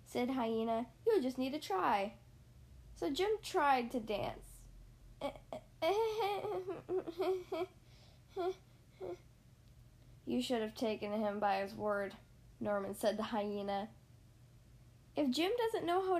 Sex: female